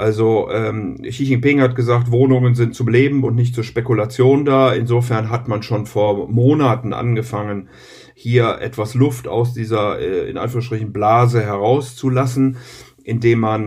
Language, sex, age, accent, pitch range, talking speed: German, male, 50-69, German, 110-130 Hz, 150 wpm